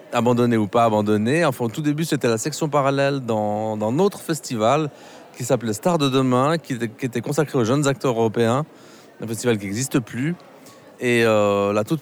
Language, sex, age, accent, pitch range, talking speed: French, male, 30-49, French, 115-145 Hz, 195 wpm